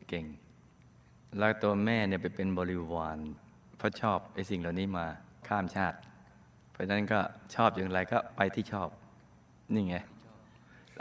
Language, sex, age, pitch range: Thai, male, 20-39, 95-125 Hz